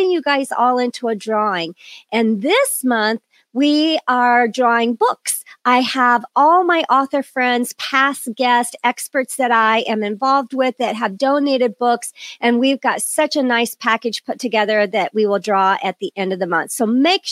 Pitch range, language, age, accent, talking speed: 225-285 Hz, English, 40-59, American, 180 wpm